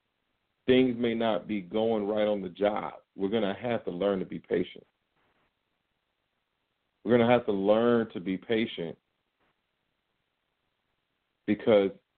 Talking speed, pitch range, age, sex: 140 wpm, 100-120 Hz, 40-59, male